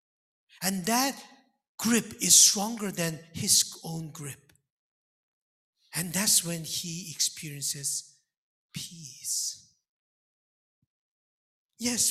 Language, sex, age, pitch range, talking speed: English, male, 60-79, 140-225 Hz, 80 wpm